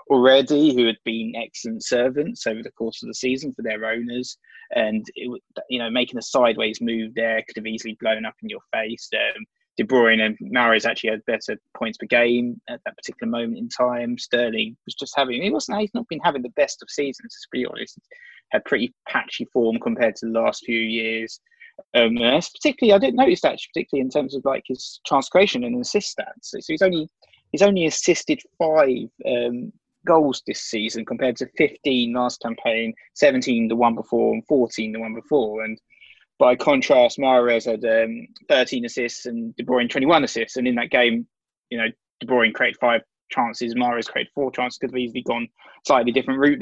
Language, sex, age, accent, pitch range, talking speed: English, male, 20-39, British, 115-155 Hz, 195 wpm